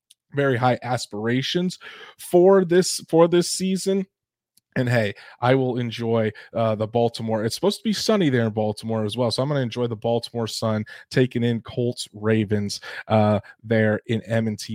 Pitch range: 115-140 Hz